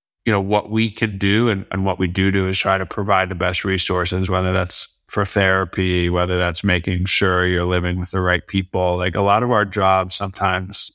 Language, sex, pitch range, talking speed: English, male, 90-100 Hz, 220 wpm